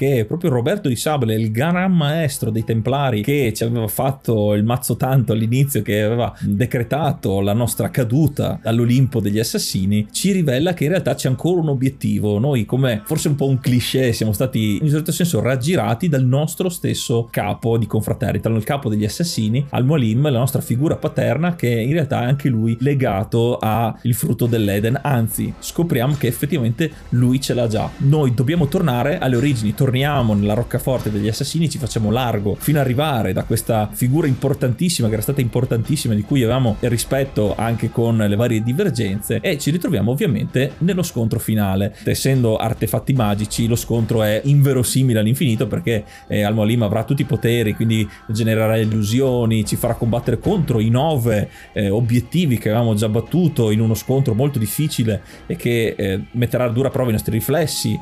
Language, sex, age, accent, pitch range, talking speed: Italian, male, 30-49, native, 110-140 Hz, 175 wpm